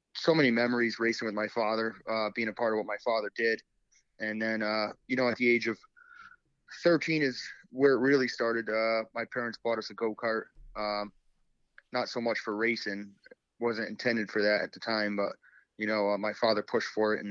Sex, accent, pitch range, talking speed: male, American, 105-120 Hz, 210 wpm